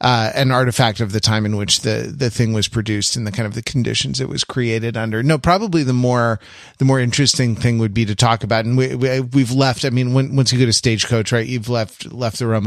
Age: 30-49